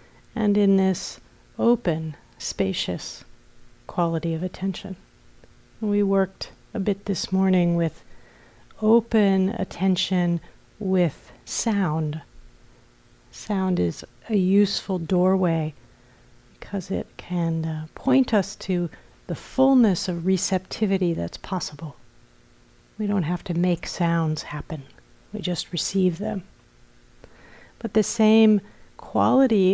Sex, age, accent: female, 40-59, American